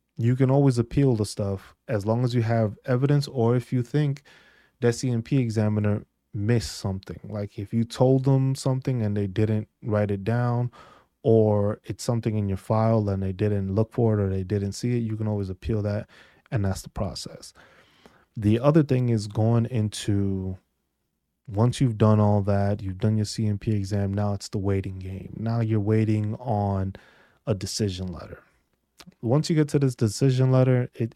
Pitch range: 100-120 Hz